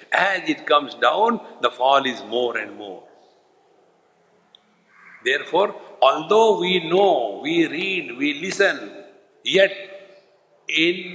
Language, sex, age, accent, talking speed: English, male, 60-79, Indian, 110 wpm